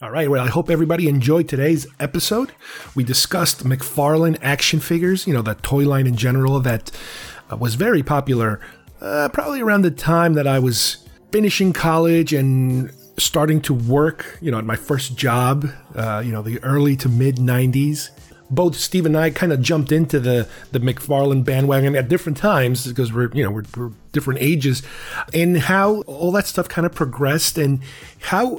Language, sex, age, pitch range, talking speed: English, male, 30-49, 125-155 Hz, 180 wpm